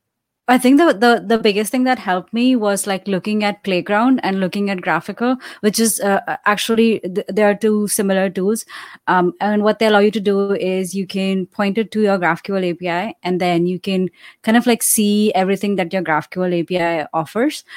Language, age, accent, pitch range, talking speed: English, 20-39, Indian, 185-220 Hz, 205 wpm